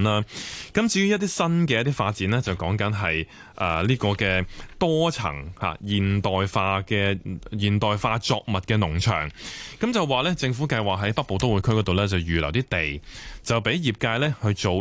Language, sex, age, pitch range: Chinese, male, 20-39, 95-130 Hz